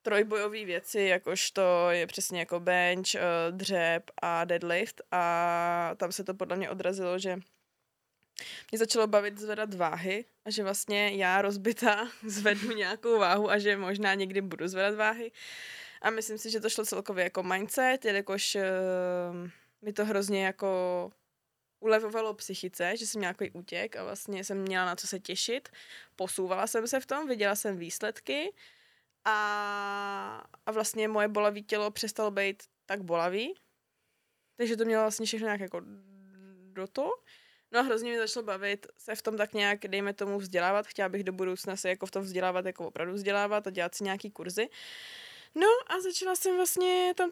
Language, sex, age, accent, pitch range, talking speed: Czech, female, 20-39, native, 190-225 Hz, 165 wpm